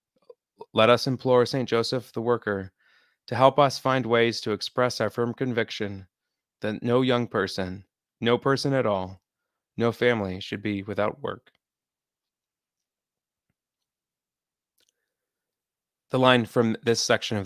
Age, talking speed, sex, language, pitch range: 20-39, 125 wpm, male, English, 100-120 Hz